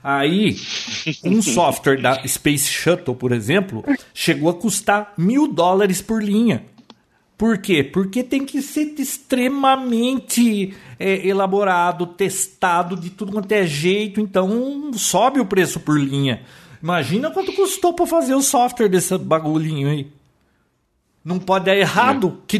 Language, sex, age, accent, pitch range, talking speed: Portuguese, male, 50-69, Brazilian, 145-205 Hz, 140 wpm